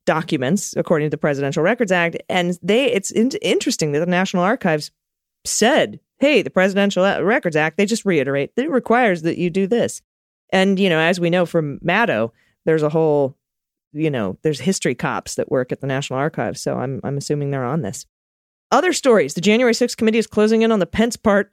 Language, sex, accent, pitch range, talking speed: English, female, American, 155-205 Hz, 210 wpm